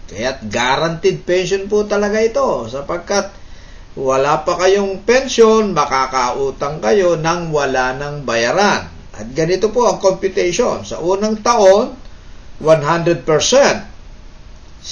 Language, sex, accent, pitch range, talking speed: Filipino, male, native, 120-200 Hz, 105 wpm